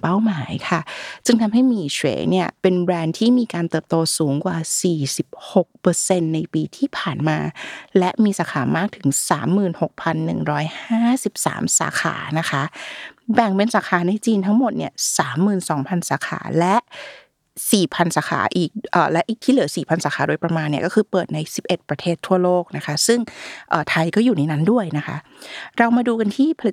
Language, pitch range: Thai, 165-220 Hz